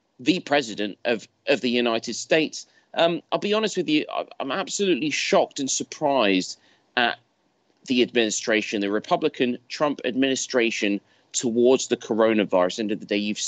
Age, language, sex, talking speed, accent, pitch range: 30-49, English, male, 145 wpm, British, 105-170 Hz